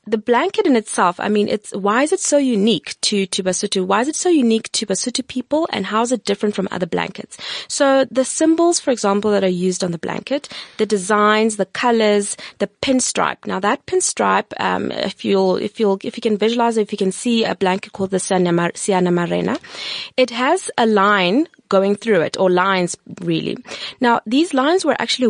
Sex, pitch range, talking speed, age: female, 190-250 Hz, 205 wpm, 20-39